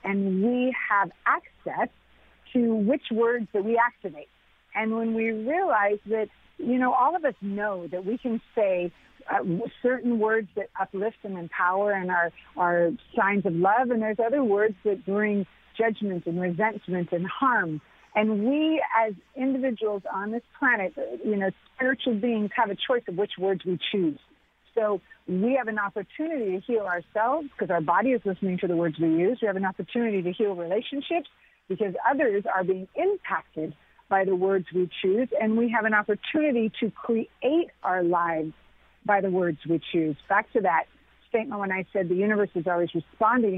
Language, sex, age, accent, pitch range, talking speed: English, female, 50-69, American, 190-240 Hz, 180 wpm